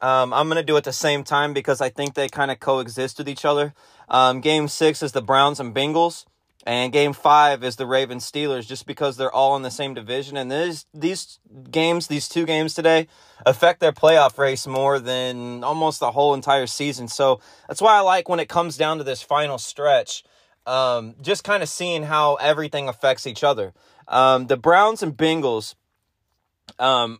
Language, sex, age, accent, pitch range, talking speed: English, male, 20-39, American, 130-160 Hz, 195 wpm